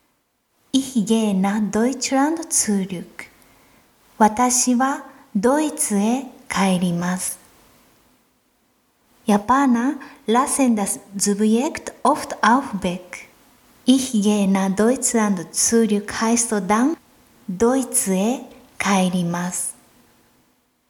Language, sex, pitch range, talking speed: German, female, 205-265 Hz, 80 wpm